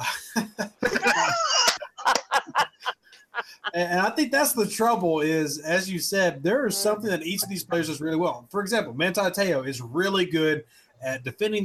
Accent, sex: American, male